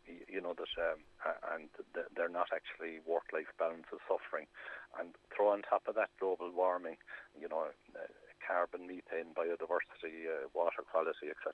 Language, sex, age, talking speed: English, male, 60-79, 155 wpm